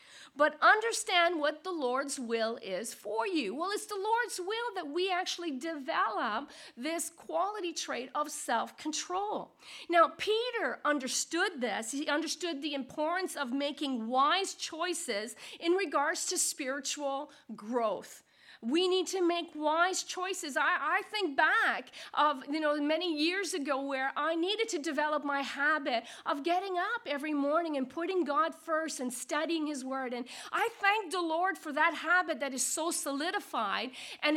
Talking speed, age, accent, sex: 155 wpm, 50-69, American, female